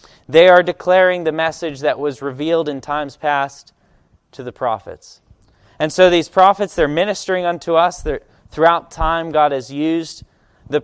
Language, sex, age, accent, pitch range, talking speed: English, male, 20-39, American, 140-180 Hz, 155 wpm